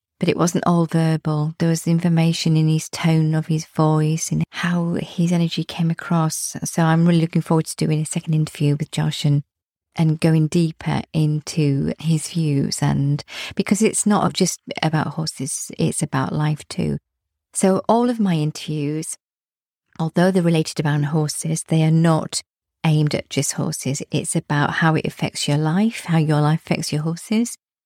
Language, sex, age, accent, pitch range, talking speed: English, female, 40-59, British, 155-180 Hz, 170 wpm